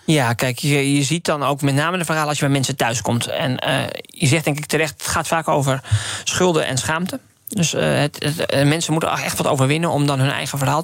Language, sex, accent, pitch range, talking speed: Dutch, male, Dutch, 145-190 Hz, 250 wpm